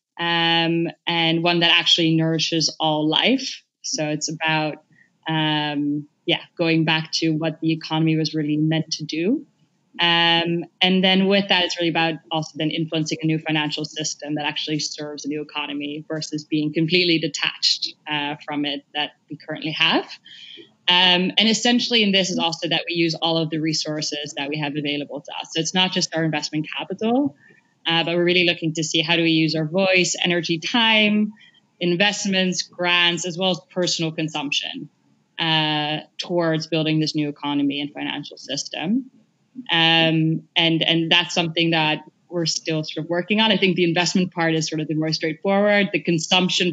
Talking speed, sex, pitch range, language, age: 180 wpm, female, 155-175 Hz, English, 20-39